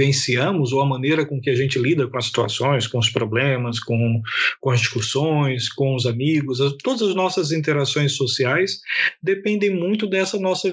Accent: Brazilian